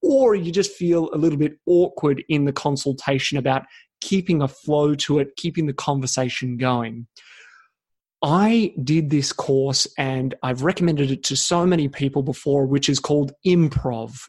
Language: English